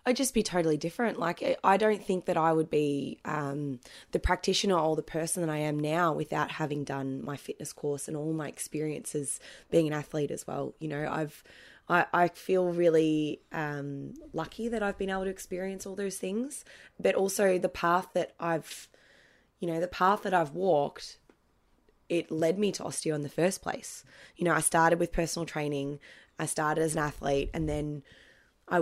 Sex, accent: female, Australian